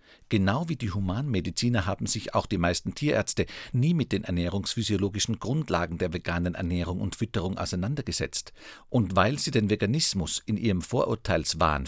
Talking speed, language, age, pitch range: 145 wpm, German, 50-69, 90-120 Hz